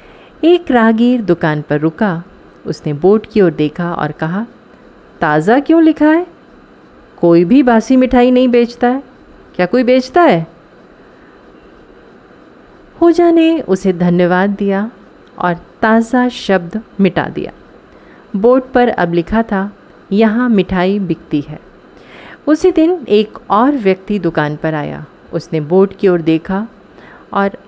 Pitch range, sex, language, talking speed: 180-255 Hz, female, Hindi, 130 wpm